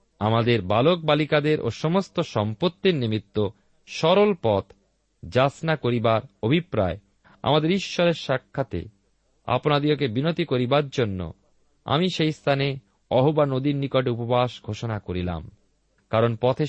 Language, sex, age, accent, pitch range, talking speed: Bengali, male, 40-59, native, 105-150 Hz, 110 wpm